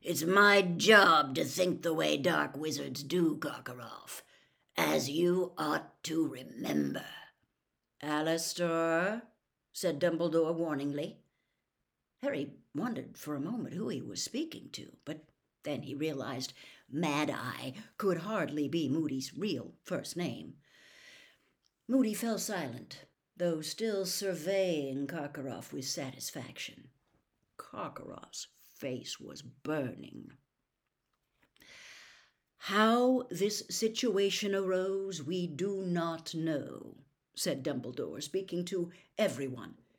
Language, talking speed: English, 100 wpm